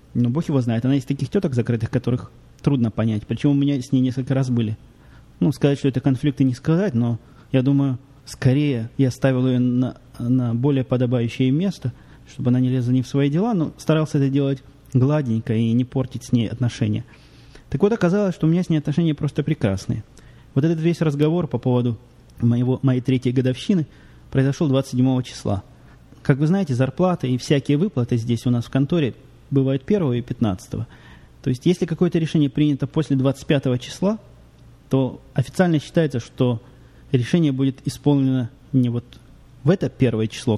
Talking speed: 175 wpm